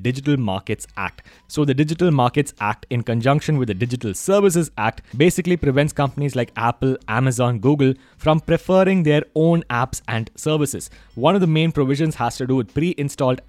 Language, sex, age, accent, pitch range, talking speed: English, male, 20-39, Indian, 120-155 Hz, 175 wpm